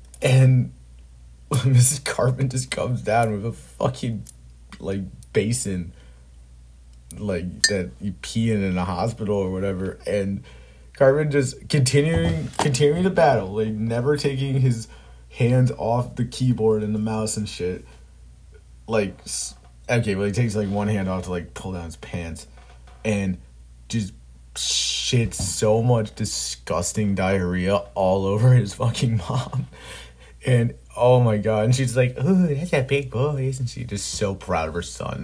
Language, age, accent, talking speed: English, 30-49, American, 150 wpm